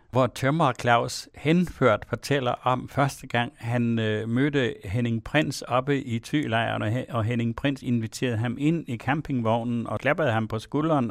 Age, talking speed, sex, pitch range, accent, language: 60-79, 155 wpm, male, 120-145 Hz, native, Danish